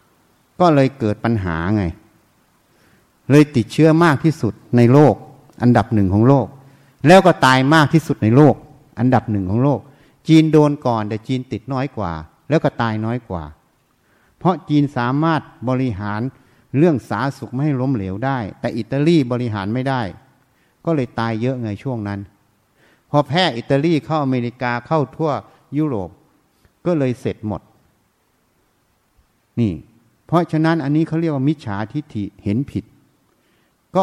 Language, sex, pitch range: Thai, male, 110-145 Hz